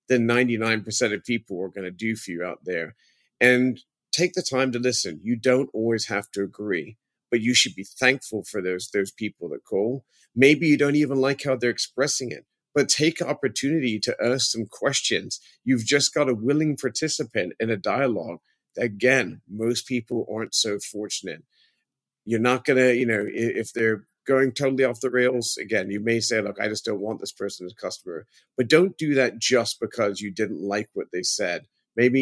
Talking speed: 195 wpm